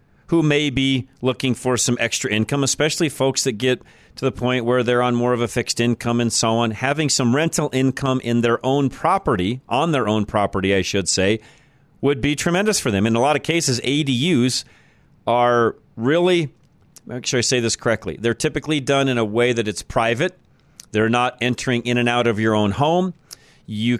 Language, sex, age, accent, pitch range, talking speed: English, male, 40-59, American, 110-135 Hz, 200 wpm